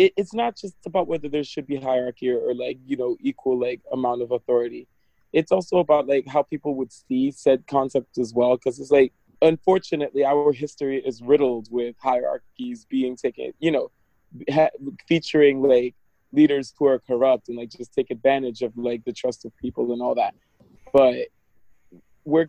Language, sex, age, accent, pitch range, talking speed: English, male, 20-39, American, 125-160 Hz, 180 wpm